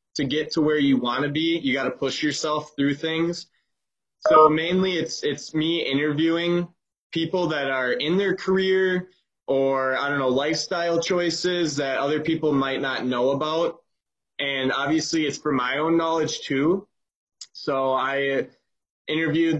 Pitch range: 130-155 Hz